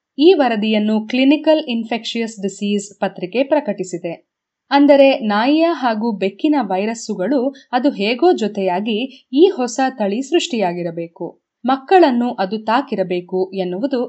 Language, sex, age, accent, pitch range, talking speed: Kannada, female, 20-39, native, 200-280 Hz, 100 wpm